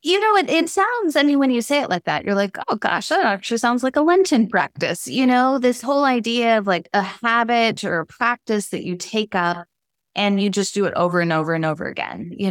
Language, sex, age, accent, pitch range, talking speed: English, female, 20-39, American, 180-230 Hz, 250 wpm